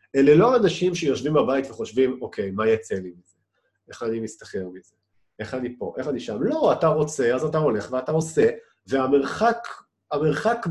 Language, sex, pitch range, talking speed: Hebrew, male, 110-155 Hz, 175 wpm